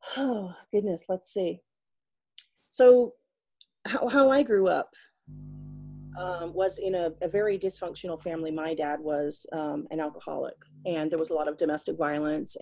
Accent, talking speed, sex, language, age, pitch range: American, 150 wpm, female, English, 30-49, 160-195 Hz